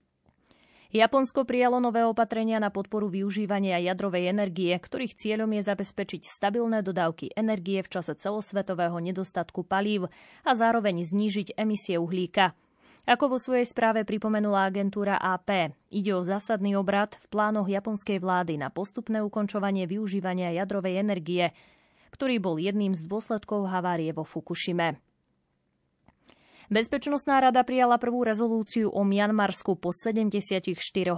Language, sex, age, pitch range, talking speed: Slovak, female, 20-39, 180-215 Hz, 125 wpm